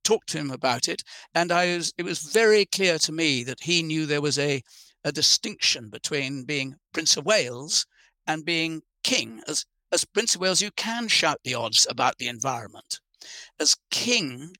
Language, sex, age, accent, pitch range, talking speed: English, male, 60-79, British, 145-195 Hz, 185 wpm